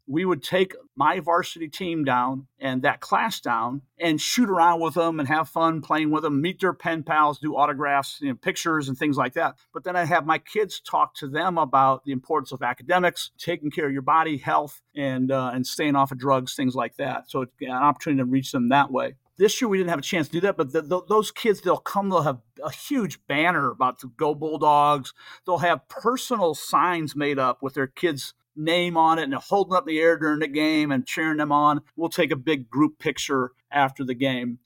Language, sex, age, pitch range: English, male, 50-69, 135-175 Hz